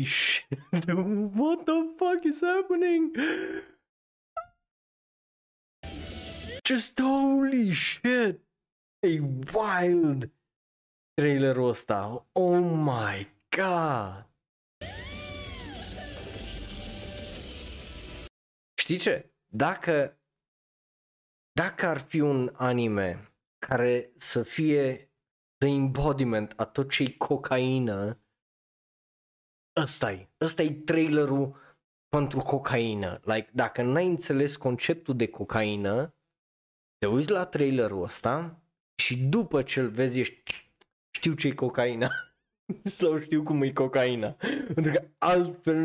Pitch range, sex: 120-175 Hz, male